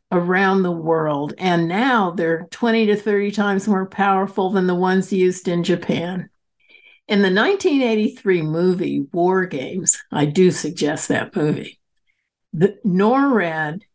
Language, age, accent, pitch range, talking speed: English, 60-79, American, 165-225 Hz, 130 wpm